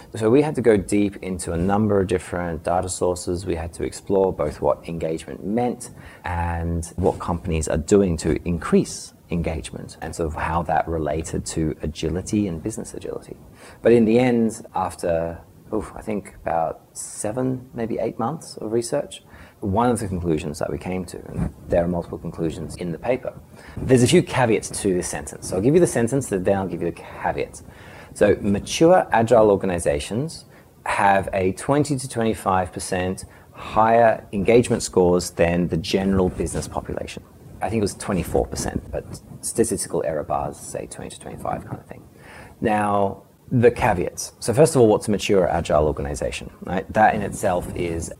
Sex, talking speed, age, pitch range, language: male, 175 wpm, 30-49, 85-115 Hz, English